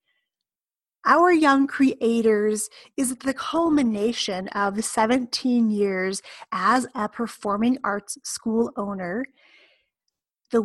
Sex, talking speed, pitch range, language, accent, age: female, 90 wpm, 210-275 Hz, English, American, 30-49